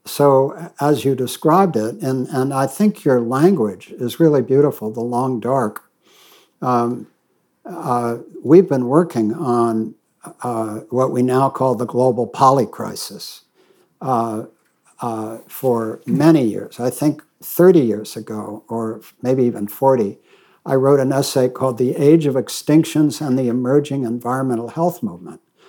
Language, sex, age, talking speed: English, male, 60-79, 140 wpm